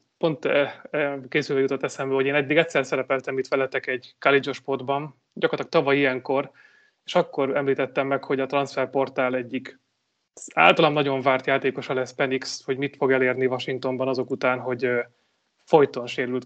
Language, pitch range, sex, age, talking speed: Hungarian, 130-145 Hz, male, 30-49, 150 wpm